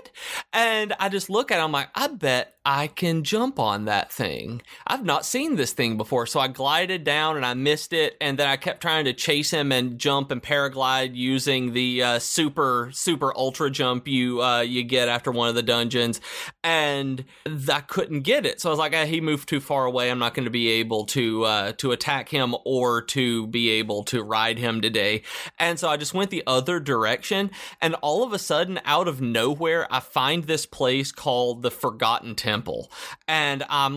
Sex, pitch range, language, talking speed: male, 125-160 Hz, English, 210 wpm